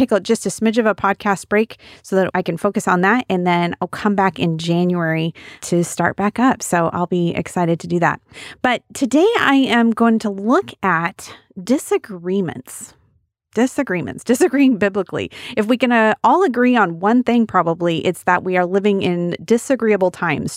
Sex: female